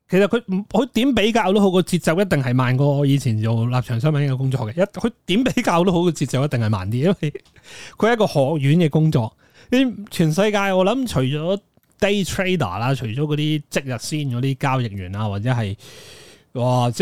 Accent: native